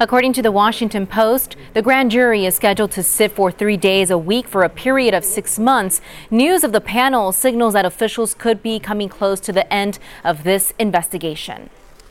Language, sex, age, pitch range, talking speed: English, female, 20-39, 190-235 Hz, 200 wpm